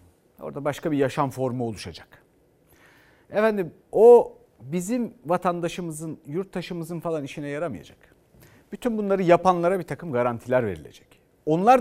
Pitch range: 145-220 Hz